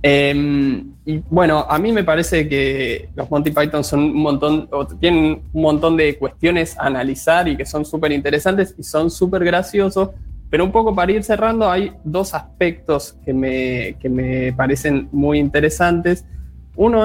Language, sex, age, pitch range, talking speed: Spanish, male, 20-39, 140-180 Hz, 165 wpm